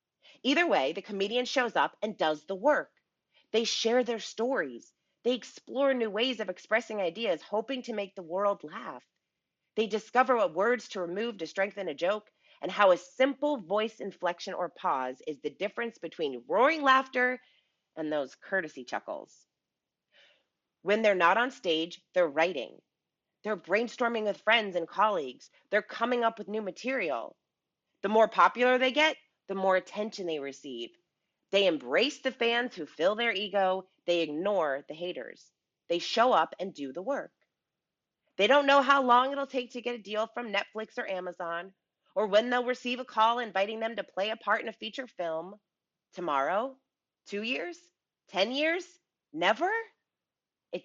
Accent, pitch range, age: American, 185-250 Hz, 30-49